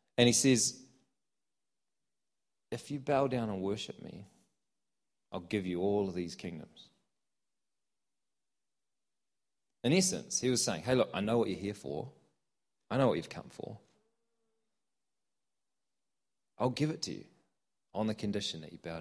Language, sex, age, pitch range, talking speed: English, male, 30-49, 90-125 Hz, 150 wpm